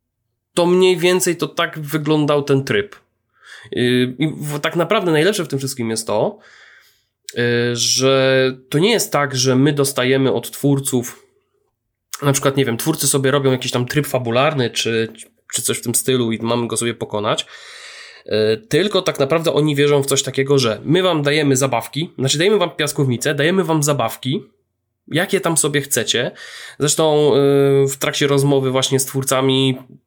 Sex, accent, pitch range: male, native, 130-180 Hz